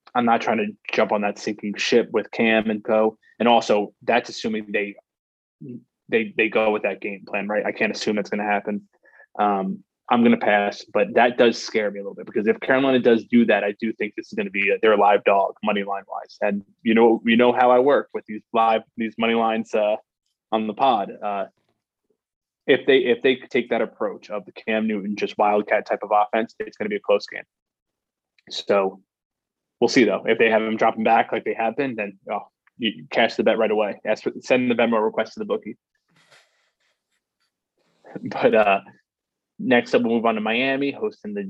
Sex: male